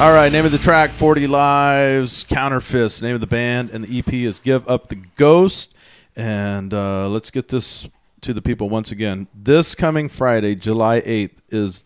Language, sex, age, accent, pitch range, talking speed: English, male, 40-59, American, 110-145 Hz, 185 wpm